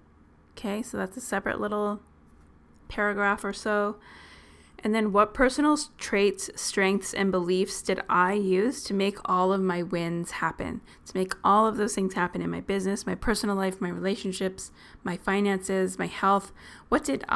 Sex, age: female, 20-39